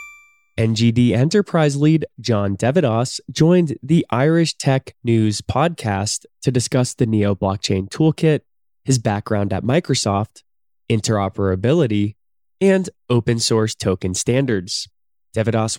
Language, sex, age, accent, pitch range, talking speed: English, male, 20-39, American, 105-155 Hz, 105 wpm